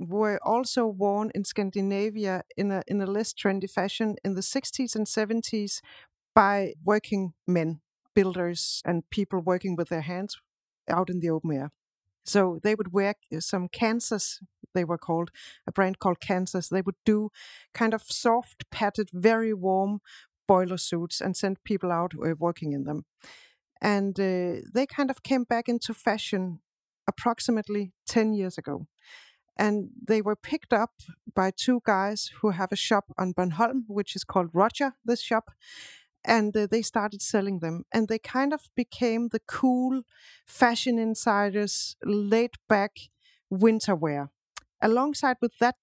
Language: English